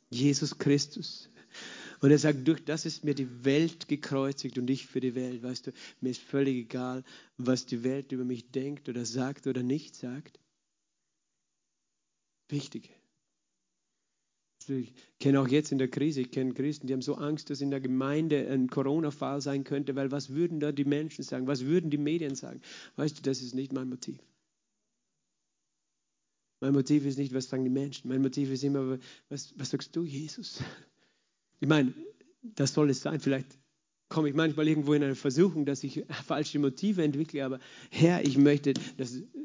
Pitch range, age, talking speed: 135-155 Hz, 40-59, 180 wpm